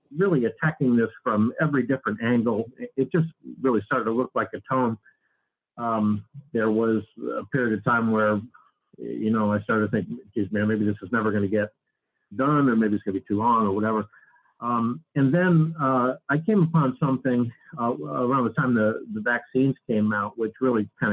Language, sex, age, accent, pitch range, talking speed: English, male, 50-69, American, 105-130 Hz, 195 wpm